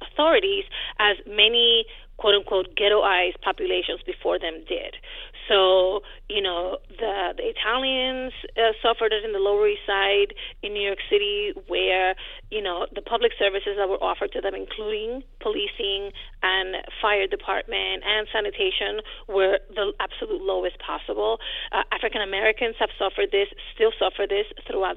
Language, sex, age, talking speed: English, female, 30-49, 145 wpm